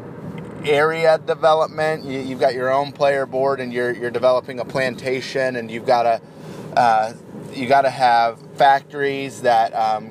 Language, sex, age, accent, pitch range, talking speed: English, male, 30-49, American, 130-175 Hz, 140 wpm